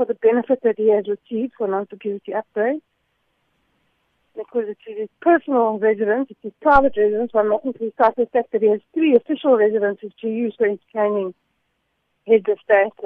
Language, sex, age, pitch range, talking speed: English, female, 60-79, 210-255 Hz, 185 wpm